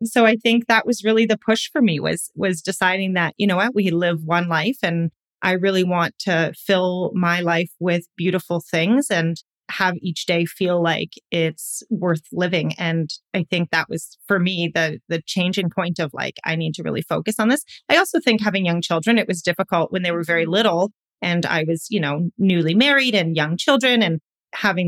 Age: 30-49